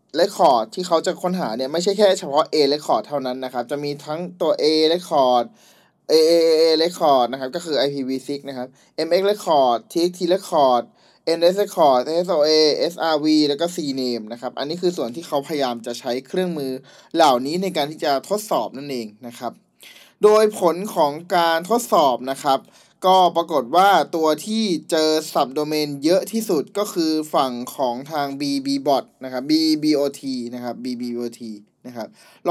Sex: male